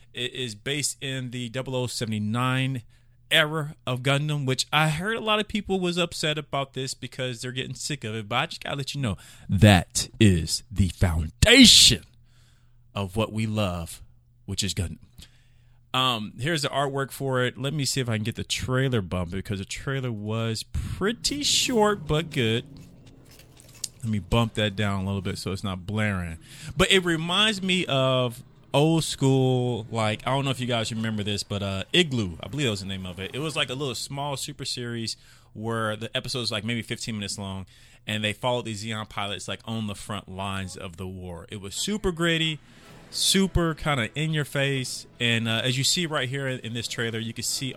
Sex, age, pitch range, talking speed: male, 30-49, 110-140 Hz, 200 wpm